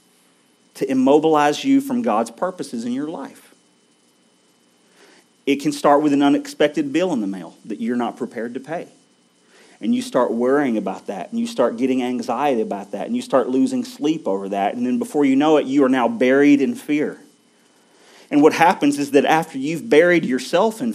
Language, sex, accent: English, male, American